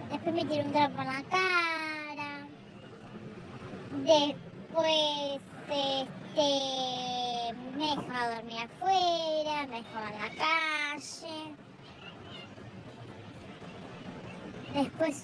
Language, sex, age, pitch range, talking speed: Spanish, male, 20-39, 255-300 Hz, 80 wpm